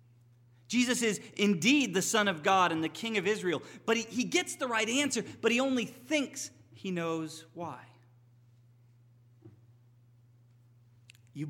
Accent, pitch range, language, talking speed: American, 120-160 Hz, English, 140 wpm